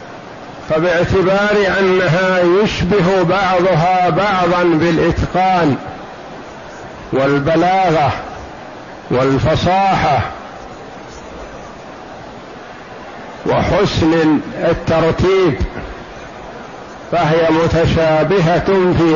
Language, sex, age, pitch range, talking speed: Arabic, male, 50-69, 160-195 Hz, 40 wpm